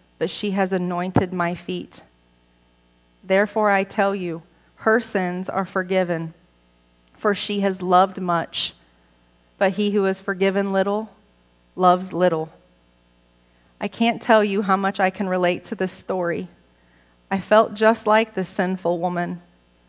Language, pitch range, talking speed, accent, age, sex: English, 160-215 Hz, 140 wpm, American, 30-49, female